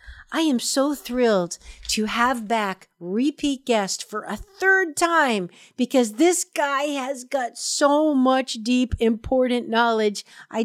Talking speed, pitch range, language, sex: 135 wpm, 210-275 Hz, English, female